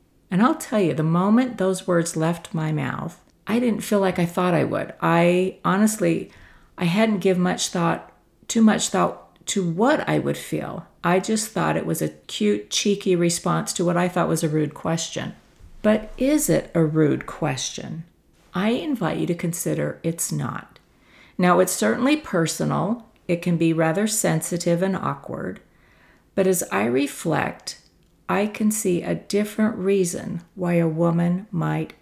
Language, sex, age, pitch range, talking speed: English, female, 50-69, 165-195 Hz, 165 wpm